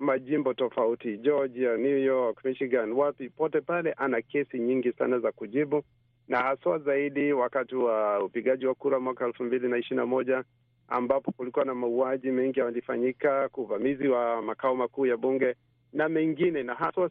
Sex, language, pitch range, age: male, Swahili, 120-140 Hz, 50-69